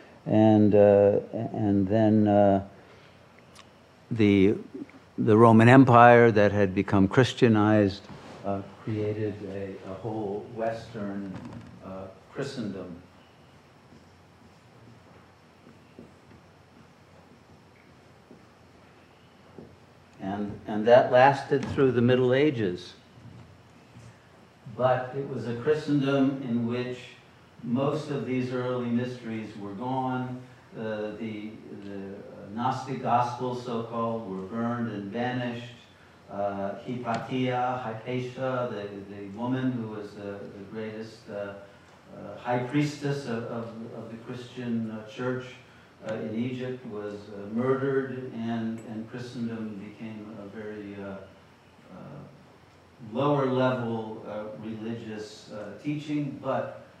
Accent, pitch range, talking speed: American, 105-125 Hz, 100 wpm